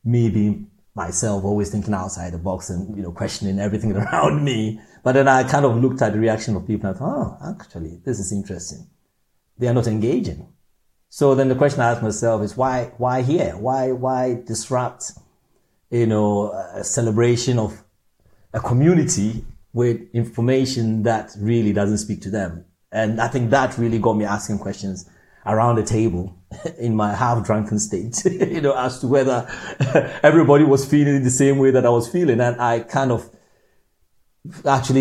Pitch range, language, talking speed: 105-125 Hz, English, 175 wpm